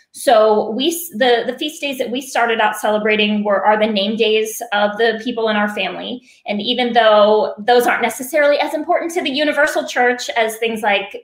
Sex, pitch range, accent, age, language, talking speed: female, 210-255 Hz, American, 20-39, English, 200 wpm